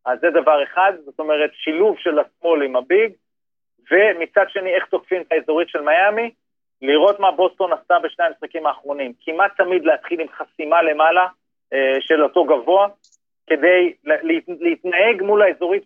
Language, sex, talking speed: Hebrew, male, 155 wpm